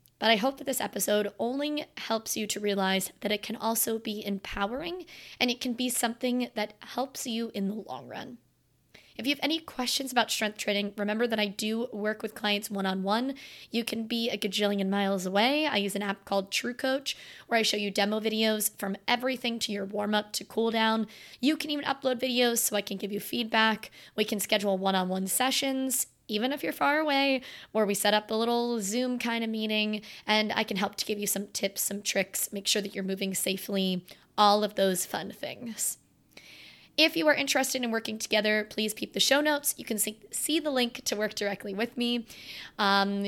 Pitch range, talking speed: 205-250 Hz, 215 wpm